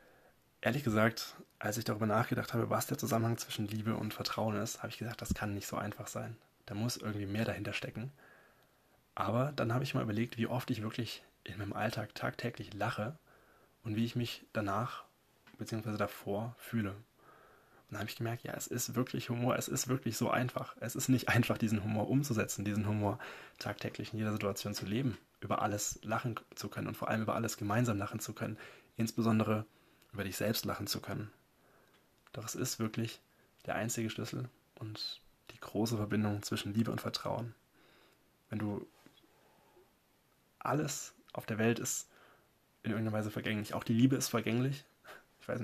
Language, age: German, 20-39